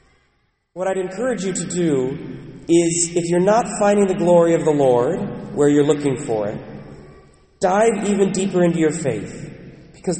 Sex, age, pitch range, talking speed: male, 30-49, 140-180 Hz, 165 wpm